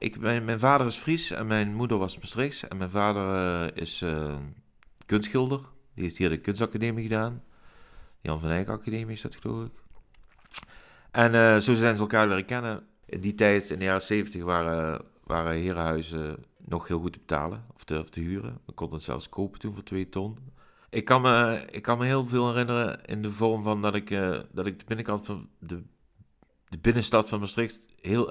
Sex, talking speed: male, 200 wpm